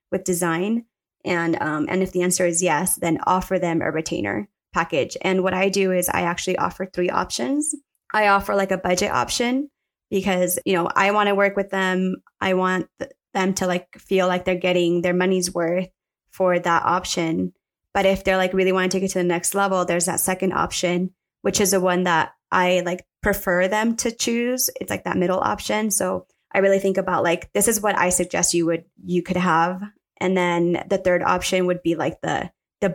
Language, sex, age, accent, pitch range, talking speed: English, female, 20-39, American, 170-195 Hz, 210 wpm